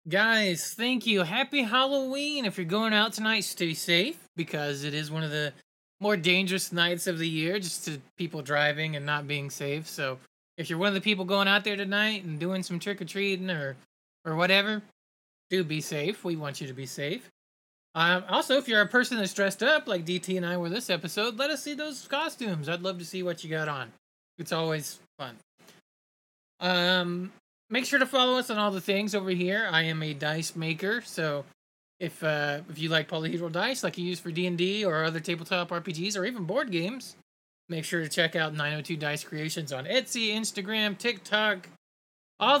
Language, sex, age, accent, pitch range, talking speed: English, male, 20-39, American, 160-210 Hz, 200 wpm